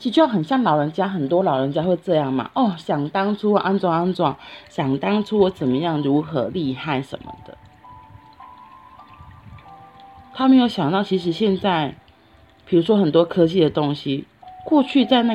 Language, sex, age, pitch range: Chinese, female, 30-49, 140-190 Hz